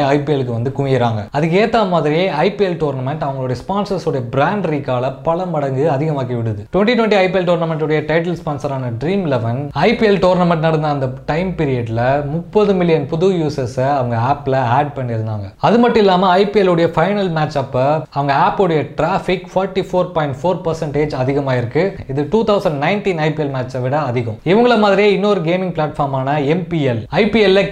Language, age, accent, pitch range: Tamil, 20-39, native, 140-185 Hz